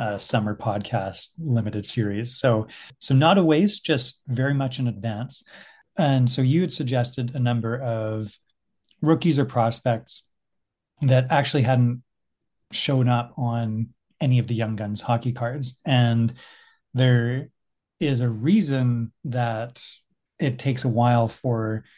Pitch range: 115-135 Hz